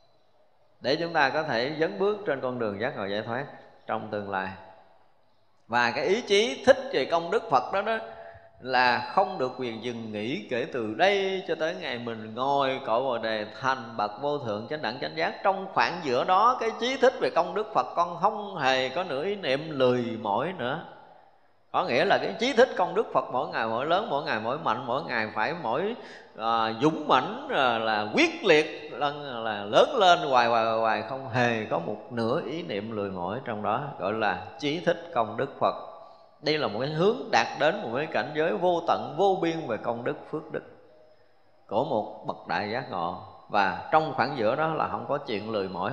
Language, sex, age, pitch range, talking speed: Vietnamese, male, 20-39, 110-175 Hz, 215 wpm